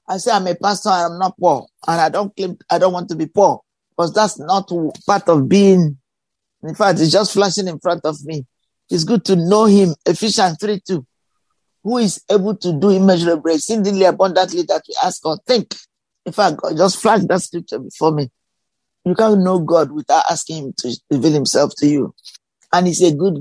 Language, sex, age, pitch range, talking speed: English, male, 50-69, 165-200 Hz, 205 wpm